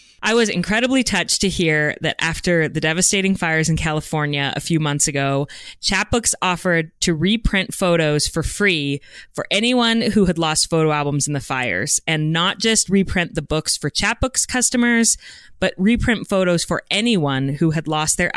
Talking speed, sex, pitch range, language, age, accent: 170 wpm, female, 155-200 Hz, English, 20-39, American